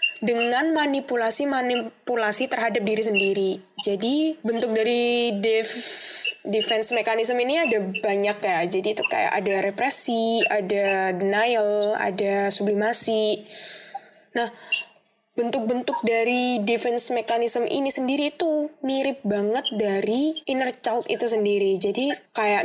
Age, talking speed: 10-29, 110 wpm